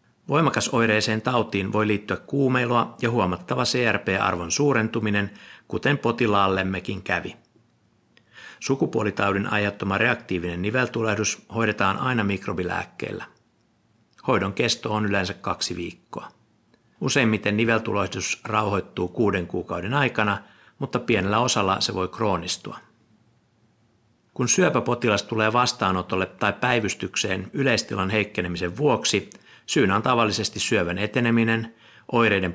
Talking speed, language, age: 95 wpm, Finnish, 60-79